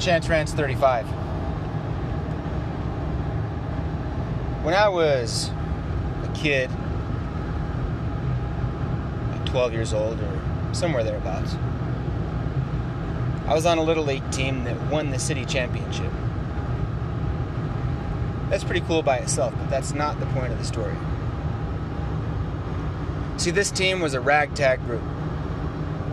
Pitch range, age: 120-145 Hz, 30-49